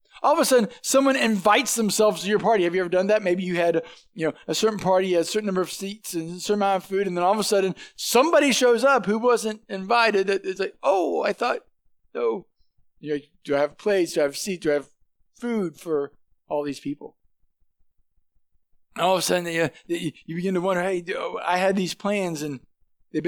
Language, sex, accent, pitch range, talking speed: English, male, American, 155-195 Hz, 220 wpm